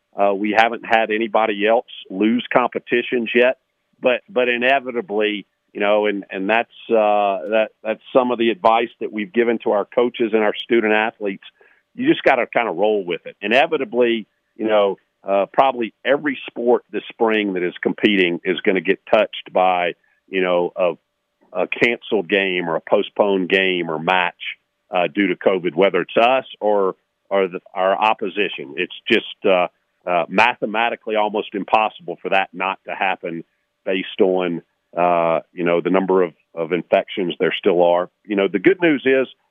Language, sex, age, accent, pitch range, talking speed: English, male, 50-69, American, 100-120 Hz, 175 wpm